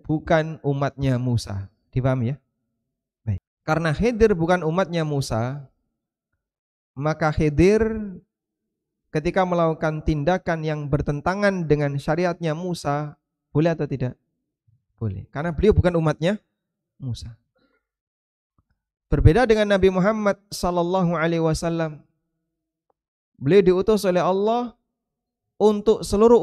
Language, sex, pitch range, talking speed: Indonesian, male, 135-180 Hz, 100 wpm